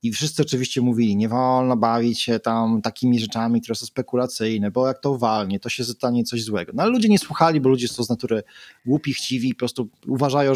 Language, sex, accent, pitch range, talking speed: Polish, male, native, 115-140 Hz, 215 wpm